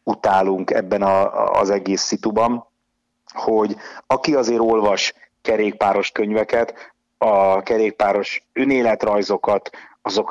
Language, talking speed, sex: Hungarian, 85 wpm, male